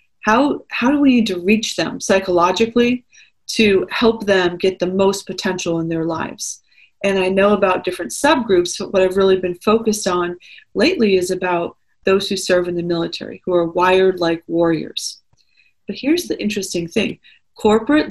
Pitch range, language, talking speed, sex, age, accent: 175-210 Hz, English, 170 wpm, female, 40-59, American